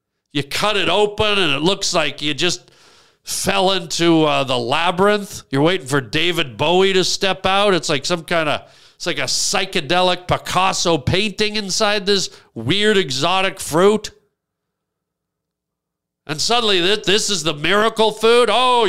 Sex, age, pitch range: male, 50-69, 165-210 Hz